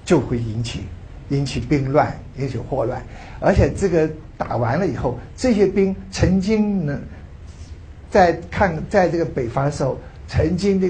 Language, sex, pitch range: Chinese, male, 125-190 Hz